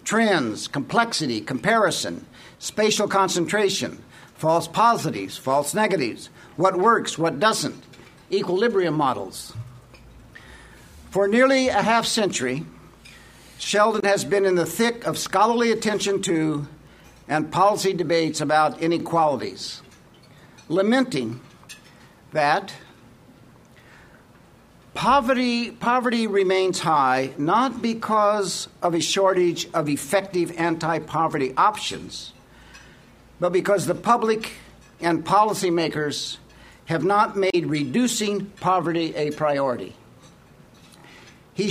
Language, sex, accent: English, male, American